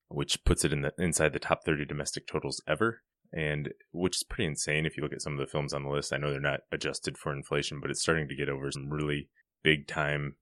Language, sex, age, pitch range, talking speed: English, male, 20-39, 70-80 Hz, 260 wpm